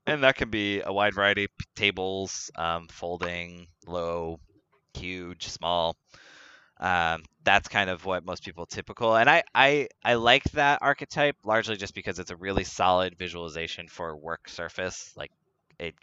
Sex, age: male, 20-39